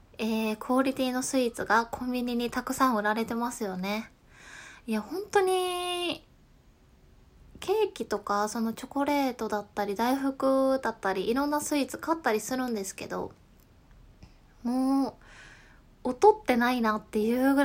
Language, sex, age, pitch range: Japanese, female, 20-39, 215-270 Hz